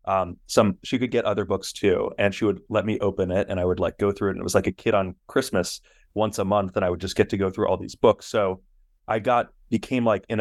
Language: English